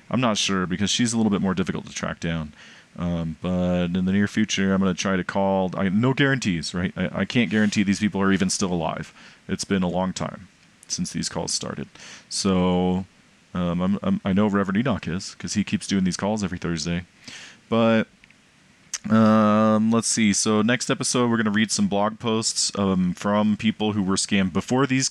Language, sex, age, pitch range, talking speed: English, male, 30-49, 90-115 Hz, 205 wpm